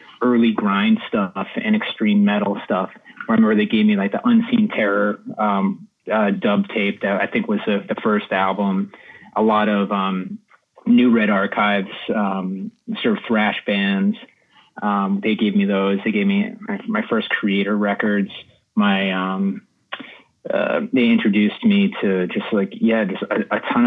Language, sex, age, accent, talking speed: English, male, 30-49, American, 165 wpm